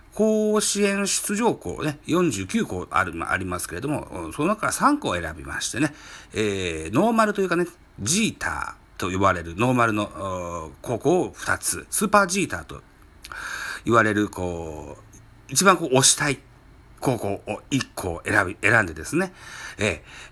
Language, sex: Japanese, male